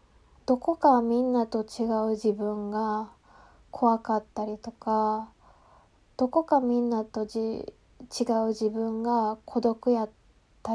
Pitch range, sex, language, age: 220-250 Hz, female, Japanese, 20-39